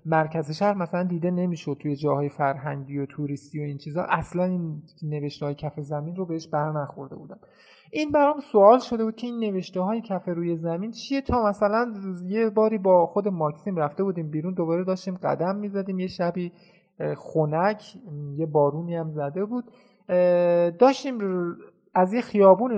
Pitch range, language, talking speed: 155-205 Hz, Persian, 165 wpm